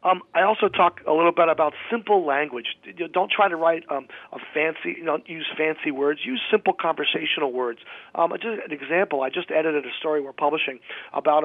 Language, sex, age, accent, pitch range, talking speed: English, male, 40-59, American, 150-190 Hz, 190 wpm